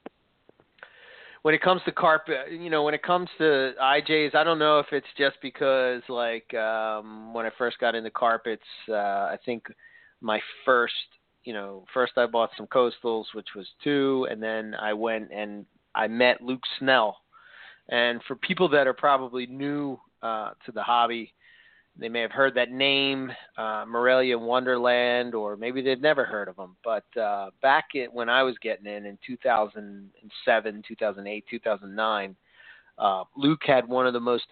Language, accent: English, American